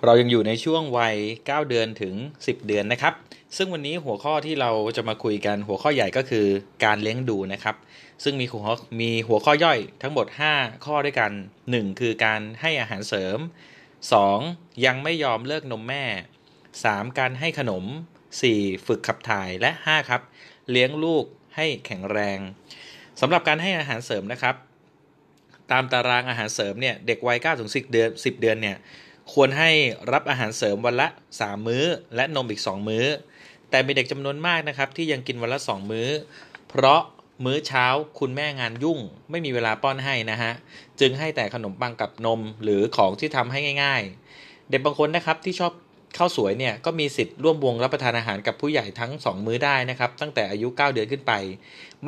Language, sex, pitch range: Thai, male, 110-150 Hz